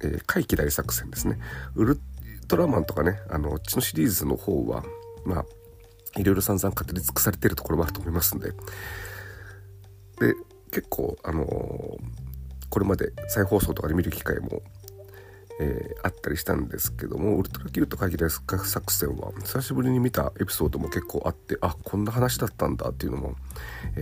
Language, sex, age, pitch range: Japanese, male, 40-59, 80-100 Hz